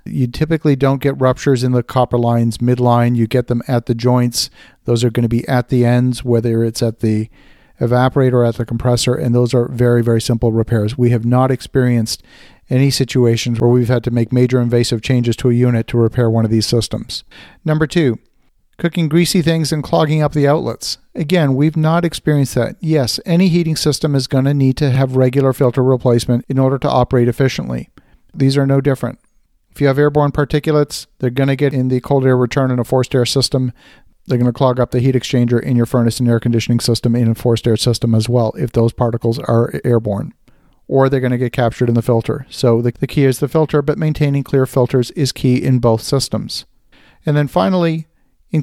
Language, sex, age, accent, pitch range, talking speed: English, male, 50-69, American, 120-145 Hz, 215 wpm